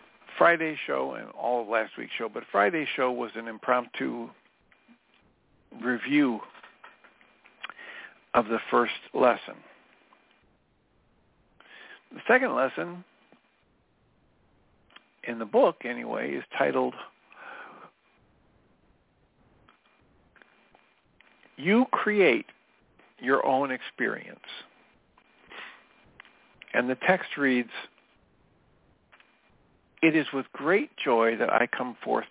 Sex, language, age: male, English, 50-69